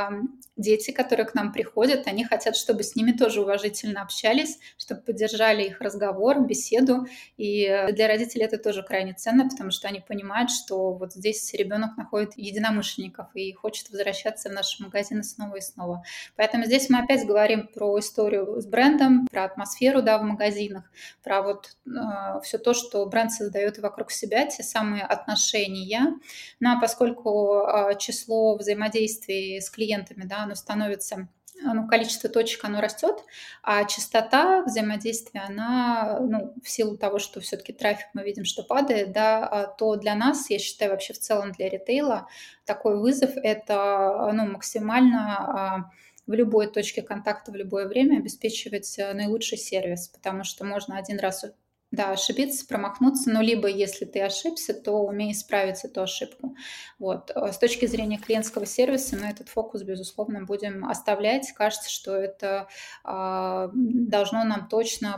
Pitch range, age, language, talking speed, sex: 200-230 Hz, 20-39, Russian, 155 wpm, female